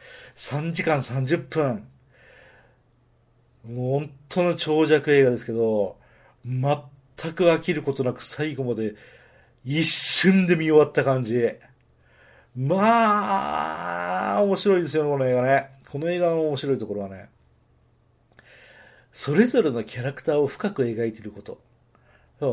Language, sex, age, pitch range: Japanese, male, 40-59, 125-180 Hz